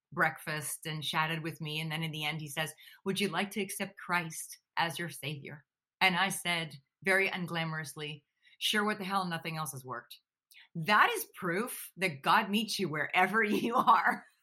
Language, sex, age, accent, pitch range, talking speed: English, female, 30-49, American, 155-205 Hz, 185 wpm